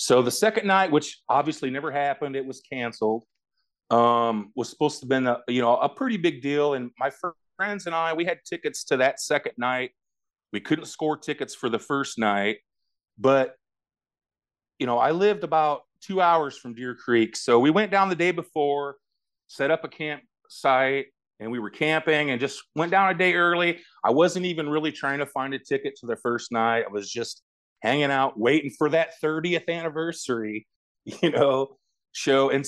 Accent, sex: American, male